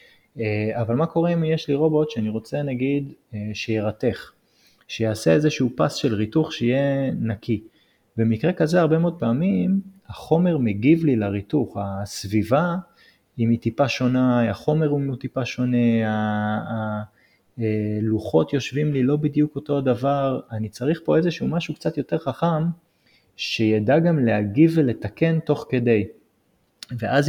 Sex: male